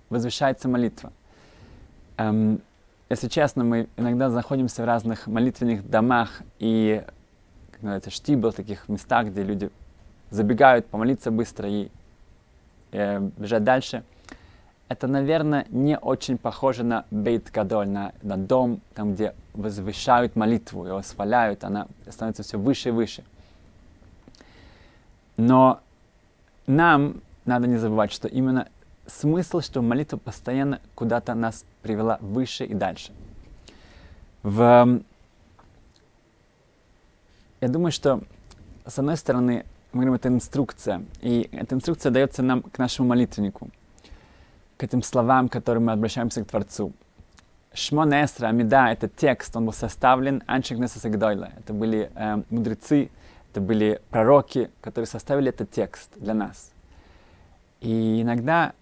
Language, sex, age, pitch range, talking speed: Russian, male, 20-39, 100-125 Hz, 120 wpm